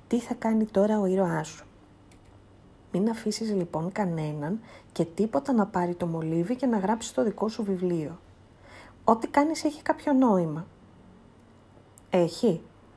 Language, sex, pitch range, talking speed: Greek, female, 165-225 Hz, 140 wpm